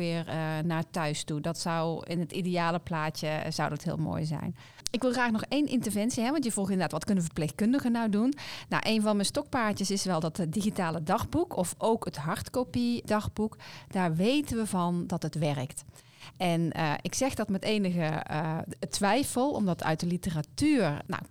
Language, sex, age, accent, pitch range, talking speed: Dutch, female, 40-59, Dutch, 165-220 Hz, 190 wpm